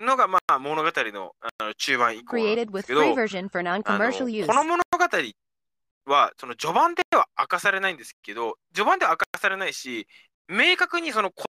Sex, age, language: male, 20-39, Japanese